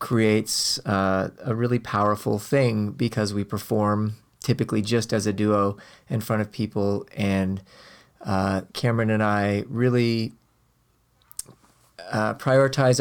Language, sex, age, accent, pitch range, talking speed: English, male, 30-49, American, 105-120 Hz, 120 wpm